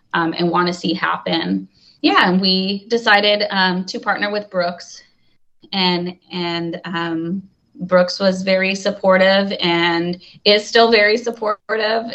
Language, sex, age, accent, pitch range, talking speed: English, female, 20-39, American, 170-205 Hz, 135 wpm